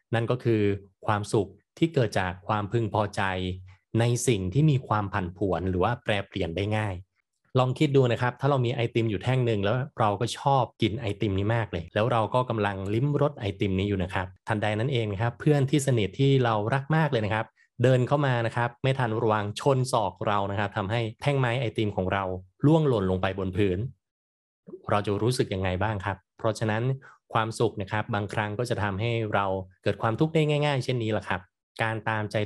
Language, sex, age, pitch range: Thai, male, 20-39, 100-125 Hz